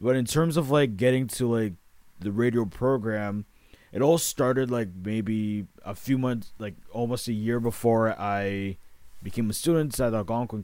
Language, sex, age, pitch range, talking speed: English, male, 20-39, 105-125 Hz, 170 wpm